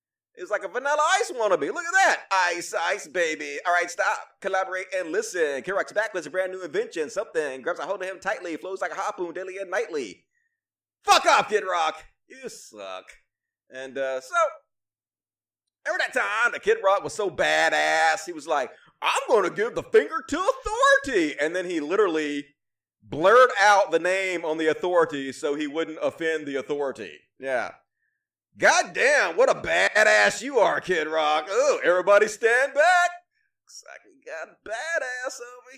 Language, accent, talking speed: English, American, 185 wpm